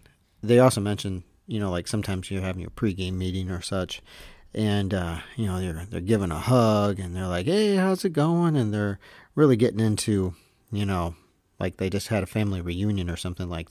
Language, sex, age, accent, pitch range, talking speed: English, male, 40-59, American, 90-115 Hz, 210 wpm